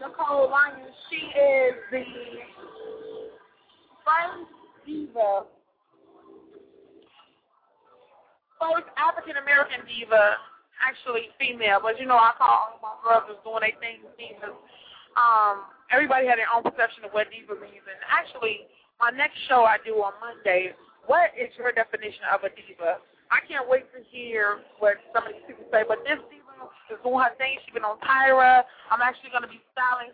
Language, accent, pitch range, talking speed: English, American, 225-280 Hz, 155 wpm